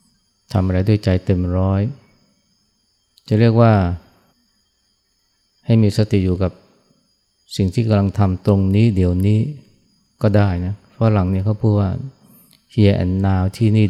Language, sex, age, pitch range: Thai, male, 20-39, 95-110 Hz